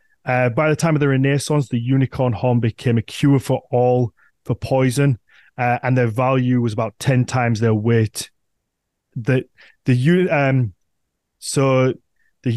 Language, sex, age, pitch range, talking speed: English, male, 20-39, 120-135 Hz, 155 wpm